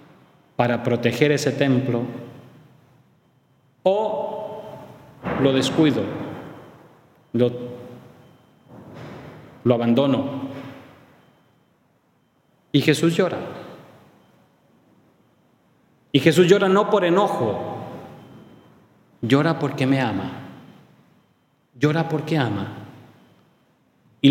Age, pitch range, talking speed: 40-59, 115-150 Hz, 65 wpm